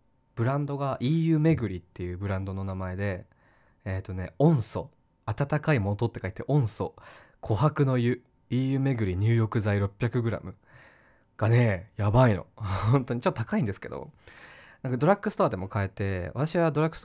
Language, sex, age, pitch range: Japanese, male, 20-39, 100-145 Hz